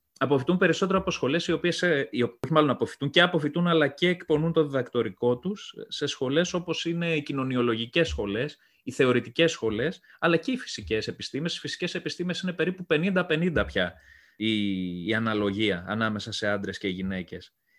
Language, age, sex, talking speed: Greek, 30-49, male, 160 wpm